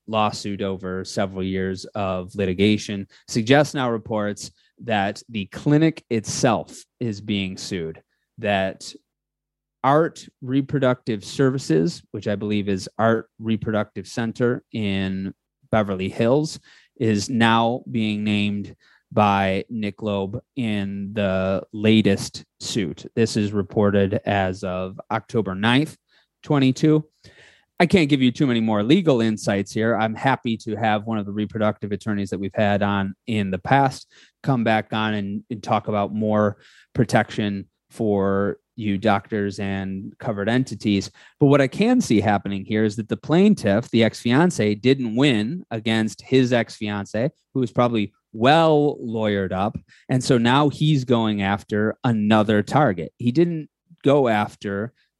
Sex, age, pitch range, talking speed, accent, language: male, 30-49, 100-125 Hz, 140 wpm, American, English